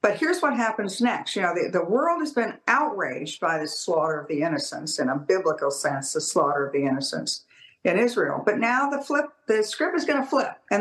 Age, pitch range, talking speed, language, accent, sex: 60-79, 180-275 Hz, 230 wpm, English, American, female